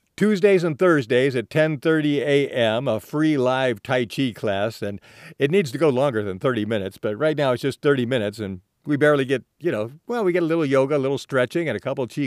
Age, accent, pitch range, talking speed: 50-69, American, 110-145 Hz, 230 wpm